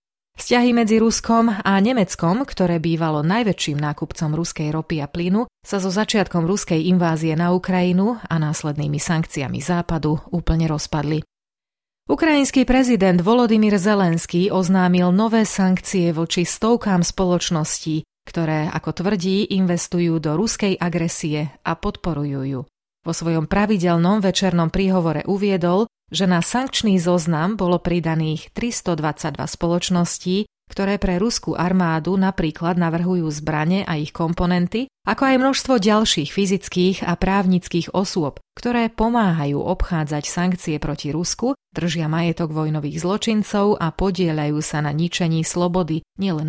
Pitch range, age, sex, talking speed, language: 160-195 Hz, 30-49, female, 125 wpm, Slovak